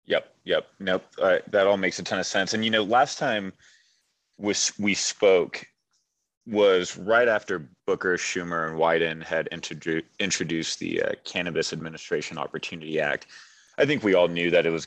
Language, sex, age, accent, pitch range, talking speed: English, male, 30-49, American, 85-105 Hz, 170 wpm